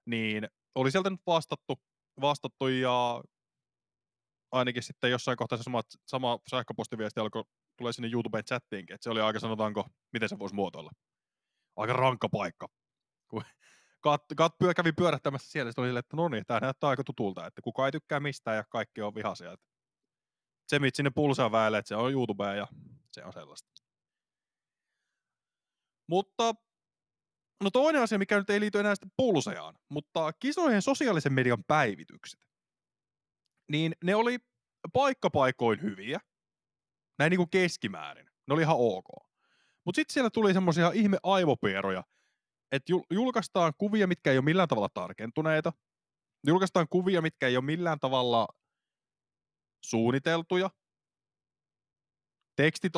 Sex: male